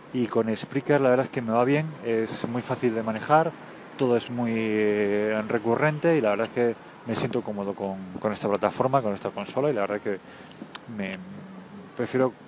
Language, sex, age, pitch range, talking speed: English, male, 20-39, 105-130 Hz, 195 wpm